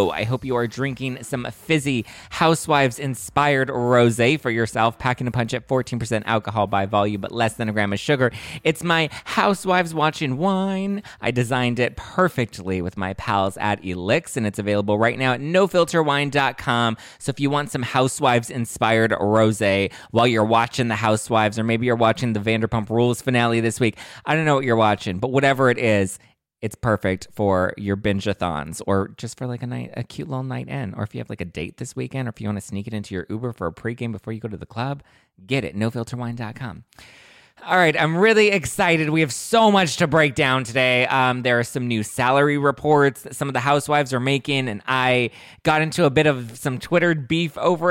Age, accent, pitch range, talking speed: 20-39, American, 110-140 Hz, 205 wpm